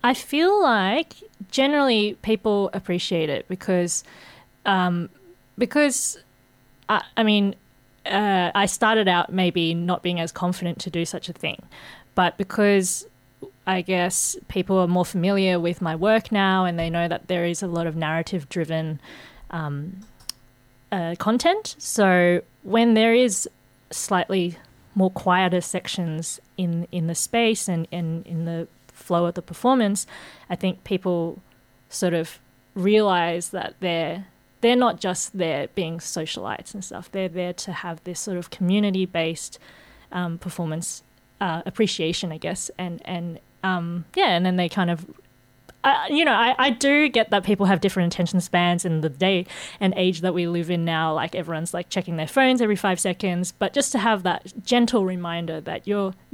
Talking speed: 160 wpm